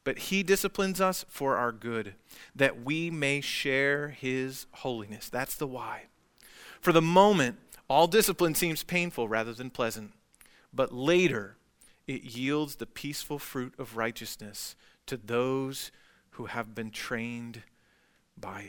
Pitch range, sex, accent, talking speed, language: 130-160 Hz, male, American, 135 wpm, English